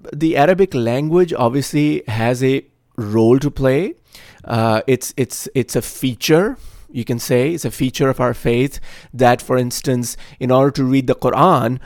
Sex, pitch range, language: male, 120-160 Hz, English